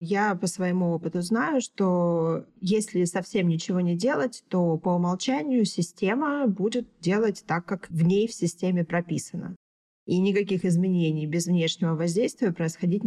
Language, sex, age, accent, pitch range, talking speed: Russian, female, 20-39, native, 170-215 Hz, 140 wpm